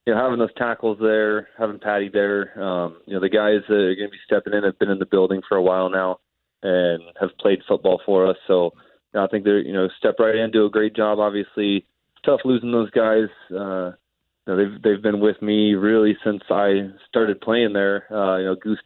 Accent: American